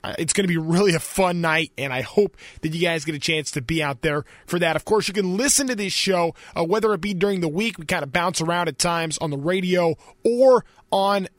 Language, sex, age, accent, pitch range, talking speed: English, male, 20-39, American, 155-195 Hz, 265 wpm